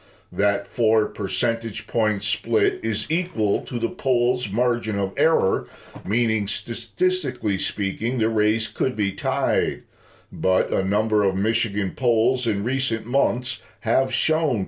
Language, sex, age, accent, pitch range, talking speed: English, male, 50-69, American, 105-130 Hz, 130 wpm